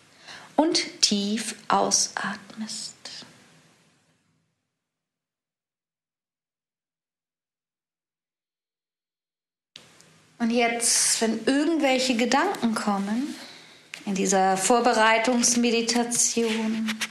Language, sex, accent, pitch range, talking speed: German, female, German, 215-255 Hz, 40 wpm